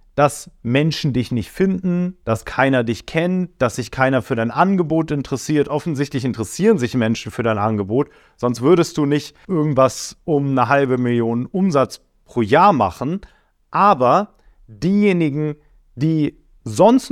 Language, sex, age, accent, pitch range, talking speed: German, male, 40-59, German, 115-155 Hz, 140 wpm